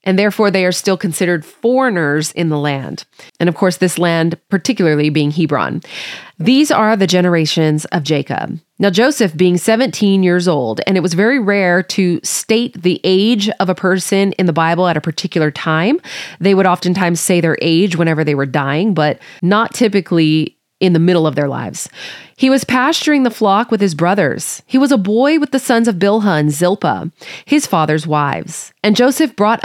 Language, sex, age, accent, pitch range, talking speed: English, female, 30-49, American, 165-220 Hz, 190 wpm